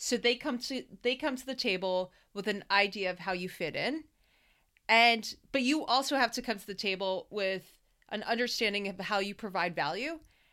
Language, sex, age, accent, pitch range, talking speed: English, female, 30-49, American, 180-230 Hz, 200 wpm